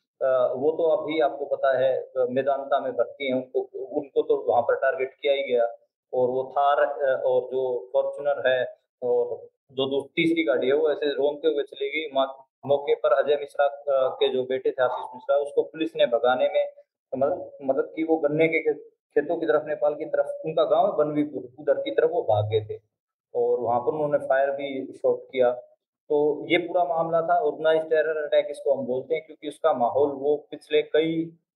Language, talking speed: Hindi, 195 wpm